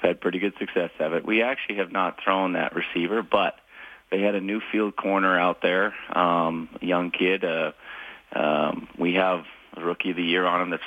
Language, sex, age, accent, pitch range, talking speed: English, male, 40-59, American, 85-105 Hz, 205 wpm